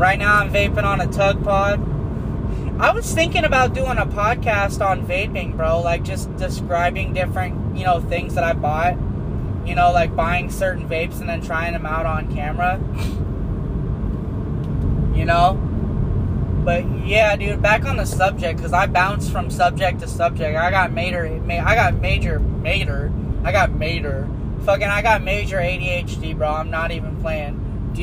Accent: American